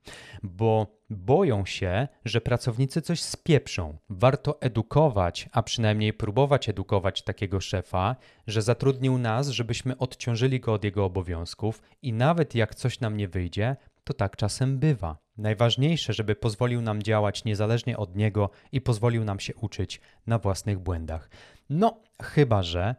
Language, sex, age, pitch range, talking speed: Polish, male, 30-49, 100-130 Hz, 140 wpm